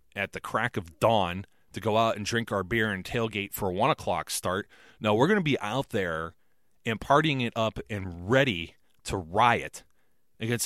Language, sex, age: English, male, 30-49